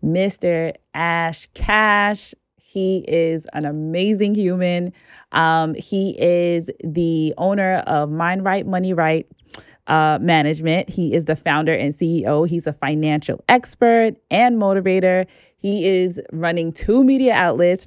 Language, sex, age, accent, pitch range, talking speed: English, female, 20-39, American, 160-195 Hz, 130 wpm